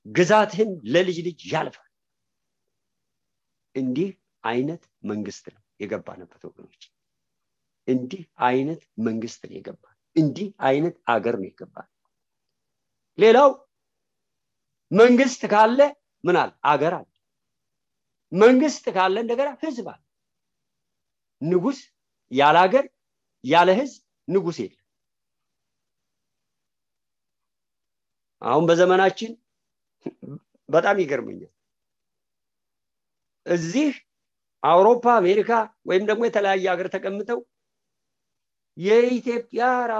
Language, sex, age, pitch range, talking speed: English, male, 50-69, 165-220 Hz, 55 wpm